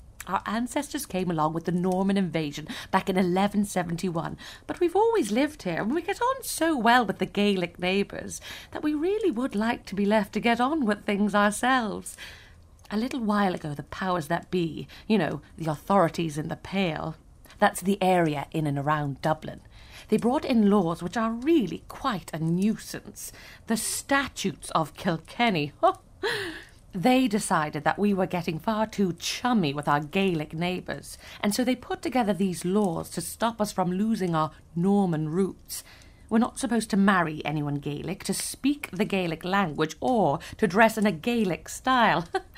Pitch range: 175-240 Hz